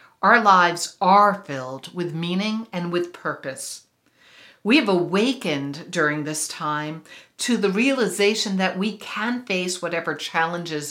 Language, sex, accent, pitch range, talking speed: English, female, American, 150-200 Hz, 130 wpm